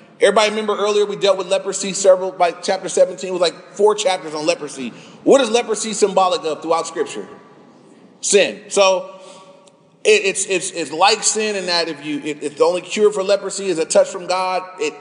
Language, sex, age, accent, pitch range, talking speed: English, male, 30-49, American, 170-205 Hz, 195 wpm